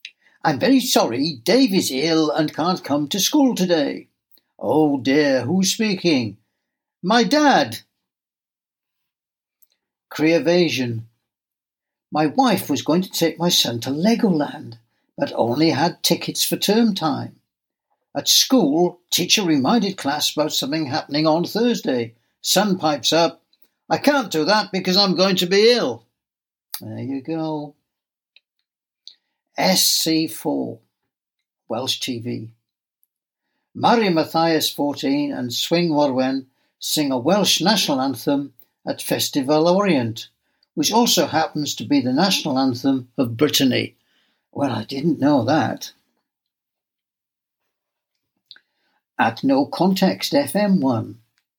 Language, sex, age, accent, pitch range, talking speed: English, male, 60-79, British, 140-210 Hz, 115 wpm